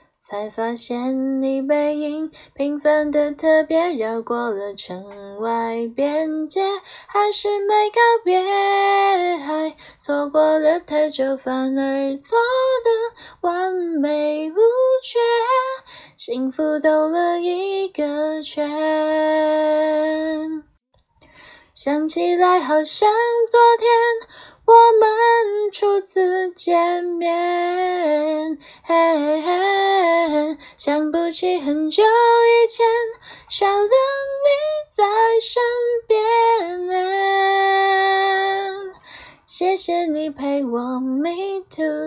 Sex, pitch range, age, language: female, 300-400 Hz, 10-29, Chinese